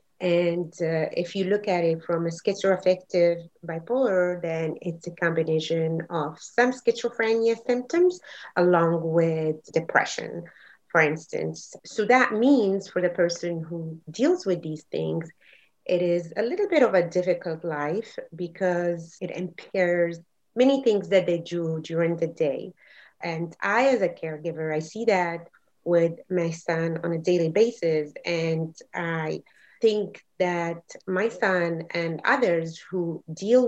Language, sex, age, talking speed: English, female, 30-49, 145 wpm